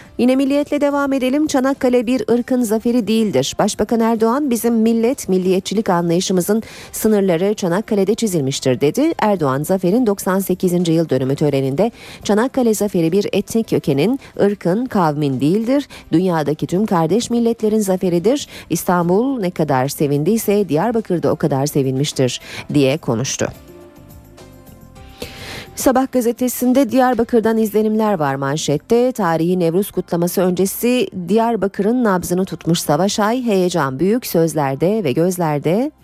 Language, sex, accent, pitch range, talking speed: Turkish, female, native, 160-230 Hz, 115 wpm